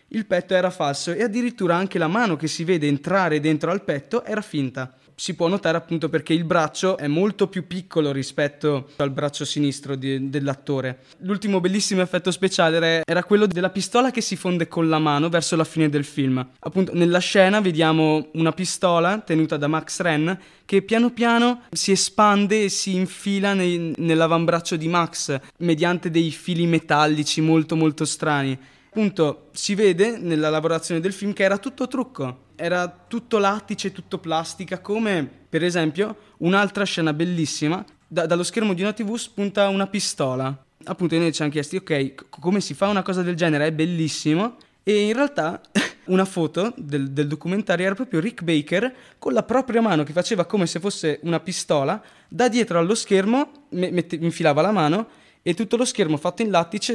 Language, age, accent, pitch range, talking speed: Italian, 20-39, native, 155-200 Hz, 175 wpm